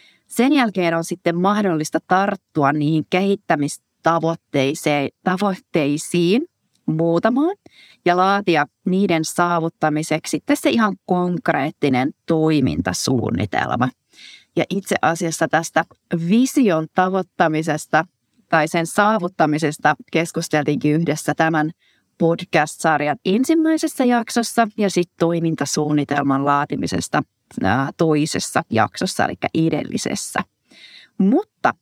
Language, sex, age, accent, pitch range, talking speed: Finnish, female, 30-49, native, 155-200 Hz, 75 wpm